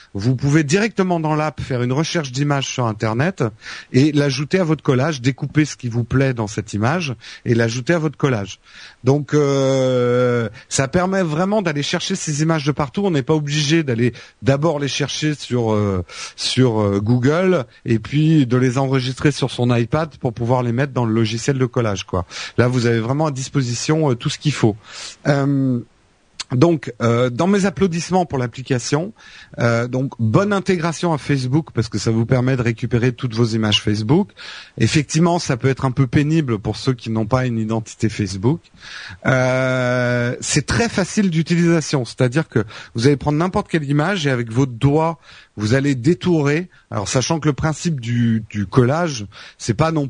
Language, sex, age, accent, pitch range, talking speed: French, male, 40-59, French, 120-155 Hz, 185 wpm